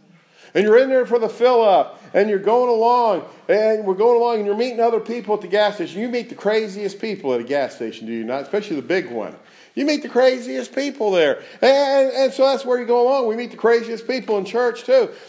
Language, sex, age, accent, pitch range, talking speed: English, male, 50-69, American, 165-245 Hz, 245 wpm